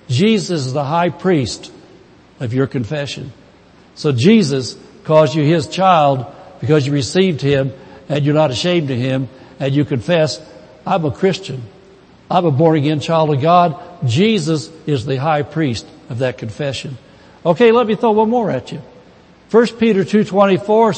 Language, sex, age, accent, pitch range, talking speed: English, male, 60-79, American, 145-205 Hz, 155 wpm